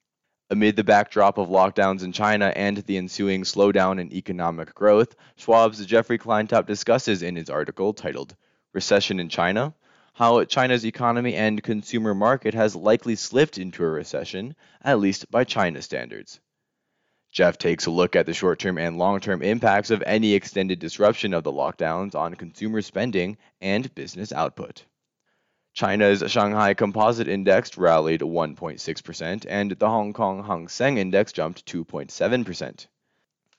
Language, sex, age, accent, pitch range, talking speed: English, male, 20-39, American, 90-110 Hz, 145 wpm